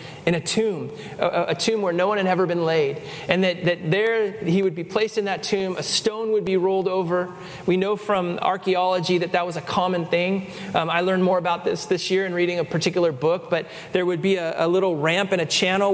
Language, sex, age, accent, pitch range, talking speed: English, male, 30-49, American, 160-185 Hz, 240 wpm